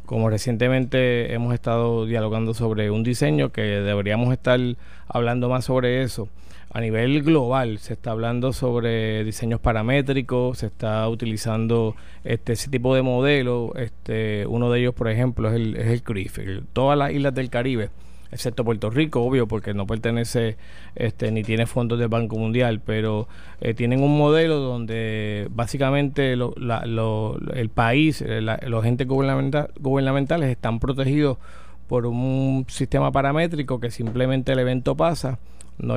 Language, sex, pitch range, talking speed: Spanish, male, 110-135 Hz, 145 wpm